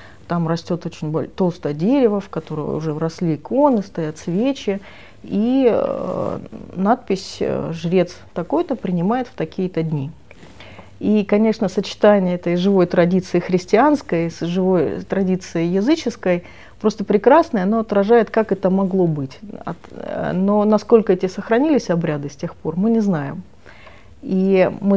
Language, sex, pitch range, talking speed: Russian, female, 160-205 Hz, 125 wpm